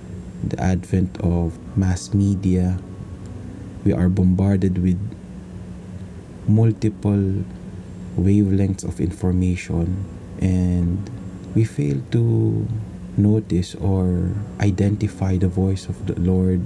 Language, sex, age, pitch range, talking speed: English, male, 20-39, 90-100 Hz, 90 wpm